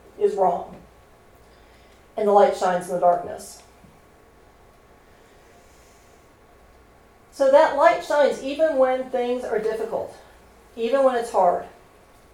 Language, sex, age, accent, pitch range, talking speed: English, female, 40-59, American, 220-270 Hz, 105 wpm